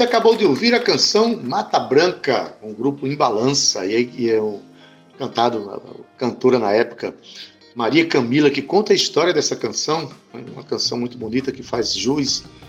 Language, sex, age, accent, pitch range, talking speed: Portuguese, male, 60-79, Brazilian, 120-145 Hz, 160 wpm